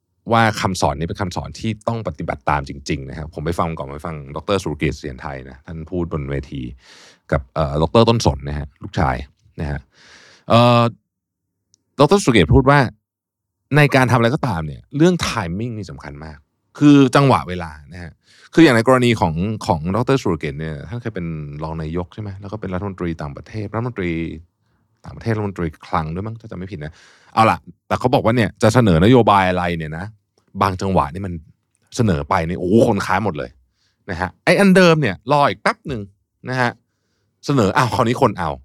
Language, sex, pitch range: Thai, male, 85-120 Hz